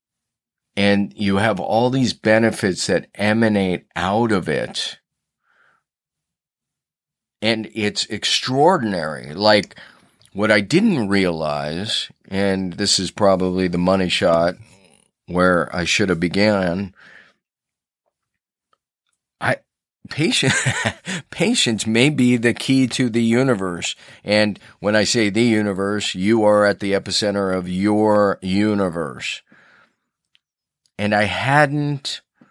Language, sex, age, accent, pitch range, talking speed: English, male, 40-59, American, 95-115 Hz, 105 wpm